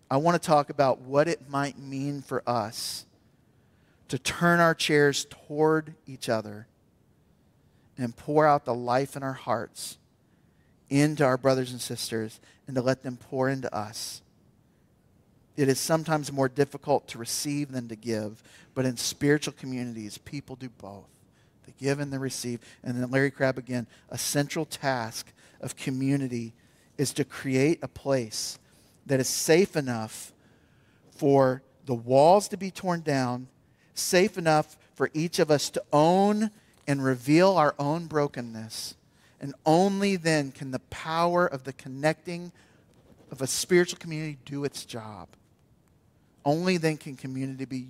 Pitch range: 120-150 Hz